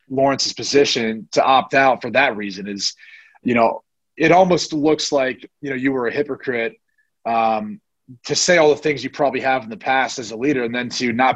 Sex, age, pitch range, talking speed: male, 30-49, 120-145 Hz, 210 wpm